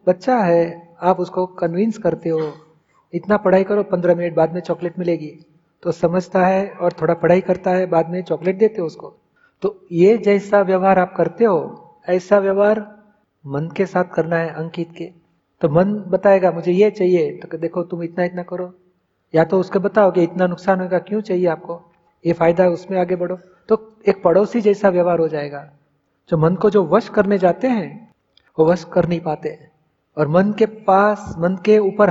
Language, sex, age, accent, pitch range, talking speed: Hindi, male, 40-59, native, 170-195 Hz, 185 wpm